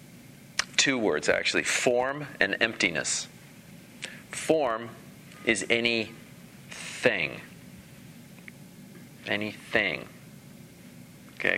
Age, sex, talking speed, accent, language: 40-59, male, 60 wpm, American, English